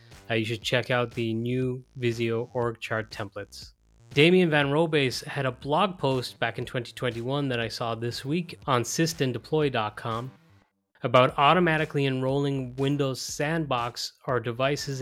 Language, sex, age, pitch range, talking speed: English, male, 20-39, 115-135 Hz, 140 wpm